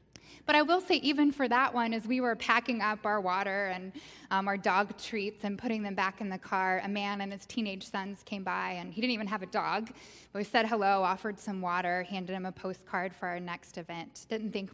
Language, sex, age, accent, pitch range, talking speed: English, female, 10-29, American, 190-235 Hz, 240 wpm